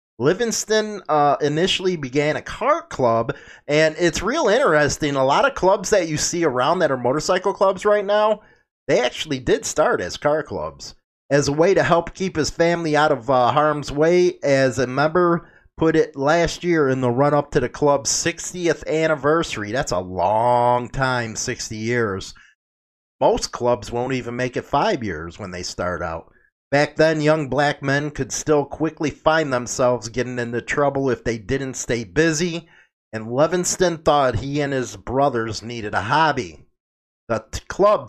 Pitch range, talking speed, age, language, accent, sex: 120-170 Hz, 170 wpm, 30-49, English, American, male